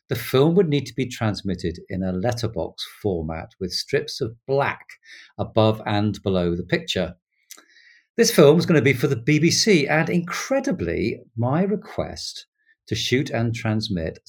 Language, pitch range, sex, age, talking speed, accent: English, 90-140 Hz, male, 50-69, 155 wpm, British